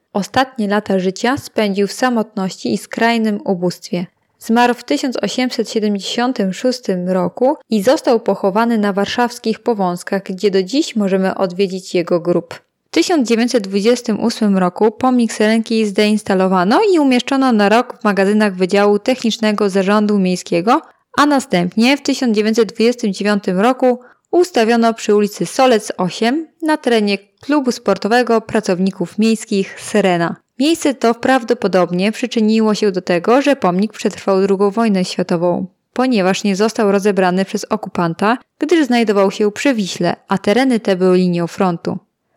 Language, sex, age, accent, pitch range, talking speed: Polish, female, 20-39, native, 190-240 Hz, 125 wpm